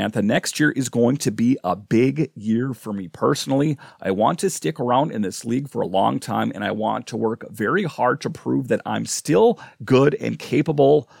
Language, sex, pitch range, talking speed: English, male, 100-130 Hz, 215 wpm